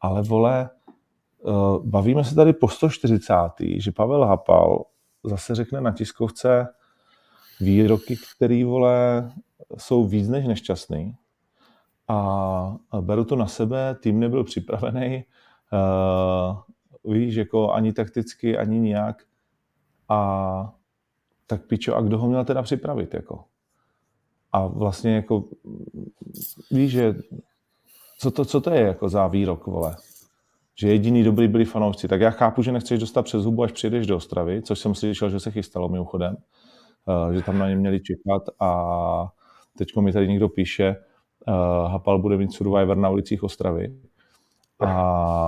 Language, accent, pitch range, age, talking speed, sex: Czech, native, 95-120 Hz, 30-49, 135 wpm, male